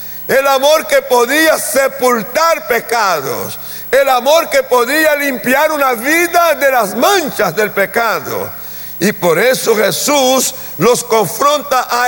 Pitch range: 180-260 Hz